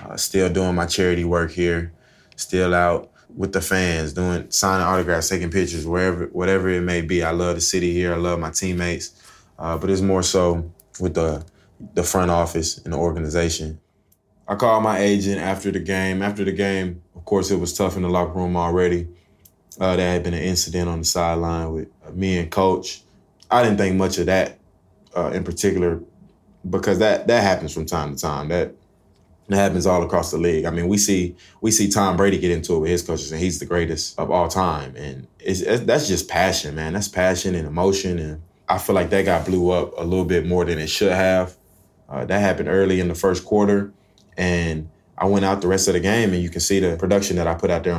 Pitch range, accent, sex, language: 85-95 Hz, American, male, English